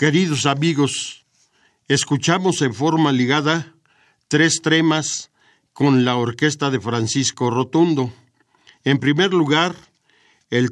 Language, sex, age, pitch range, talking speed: Spanish, male, 50-69, 130-160 Hz, 100 wpm